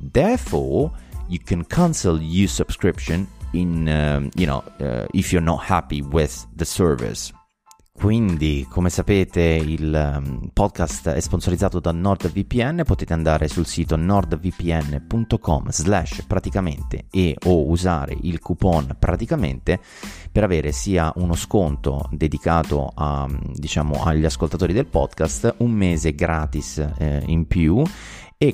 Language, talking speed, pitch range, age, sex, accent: Italian, 125 wpm, 75-95 Hz, 30-49, male, native